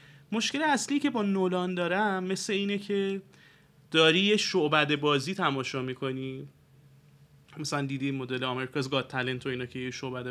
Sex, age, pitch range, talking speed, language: male, 30-49, 140-190 Hz, 145 wpm, Persian